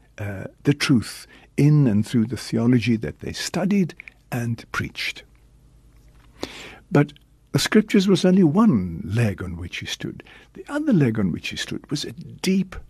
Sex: male